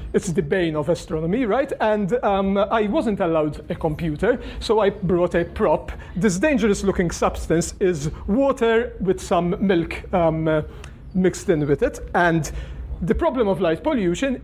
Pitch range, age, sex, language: 160-210 Hz, 40-59, male, English